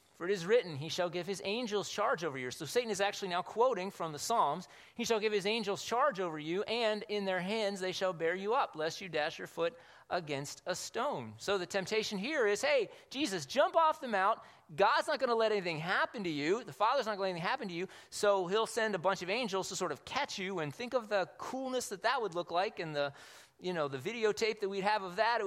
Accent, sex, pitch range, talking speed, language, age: American, male, 130-200 Hz, 260 wpm, English, 30-49